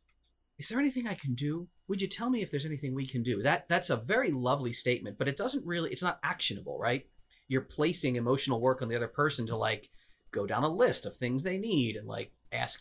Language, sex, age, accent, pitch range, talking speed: English, male, 30-49, American, 115-160 Hz, 240 wpm